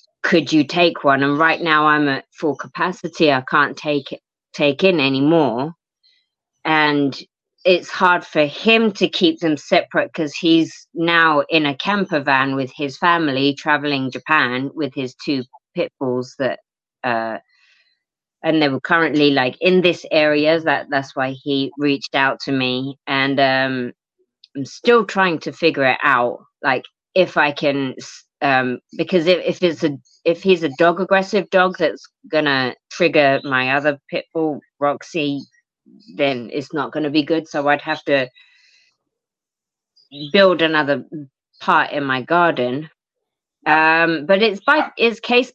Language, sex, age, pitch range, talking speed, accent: English, female, 20-39, 140-180 Hz, 155 wpm, British